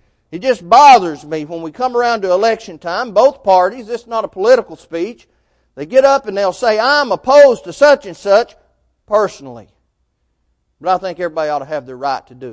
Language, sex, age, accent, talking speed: English, male, 40-59, American, 205 wpm